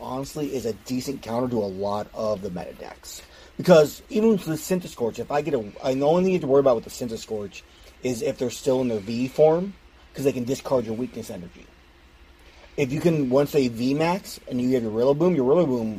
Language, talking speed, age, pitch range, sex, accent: English, 240 wpm, 30-49, 110-135 Hz, male, American